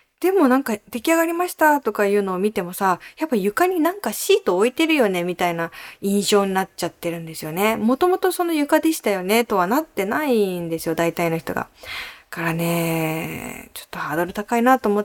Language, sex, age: Japanese, female, 20-39